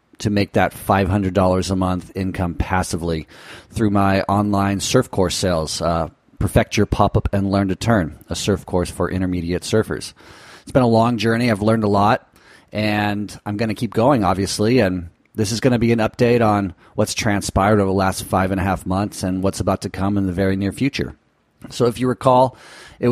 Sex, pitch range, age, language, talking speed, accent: male, 95-110 Hz, 30-49, English, 200 wpm, American